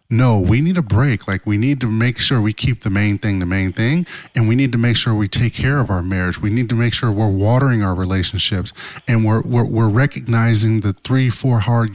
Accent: American